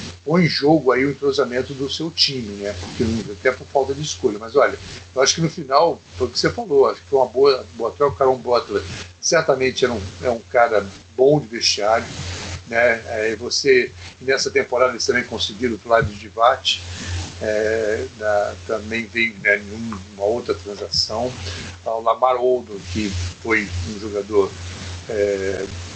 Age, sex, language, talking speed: 60-79, male, Portuguese, 165 wpm